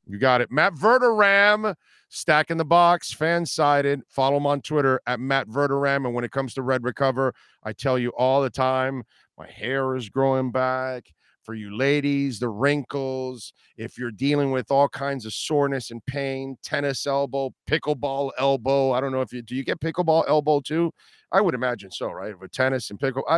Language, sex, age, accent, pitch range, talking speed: English, male, 50-69, American, 130-150 Hz, 195 wpm